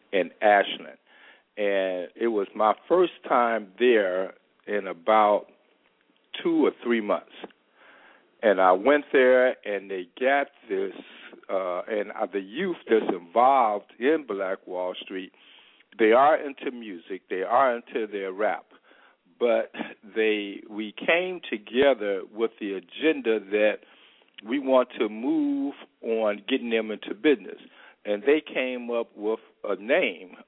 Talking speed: 130 wpm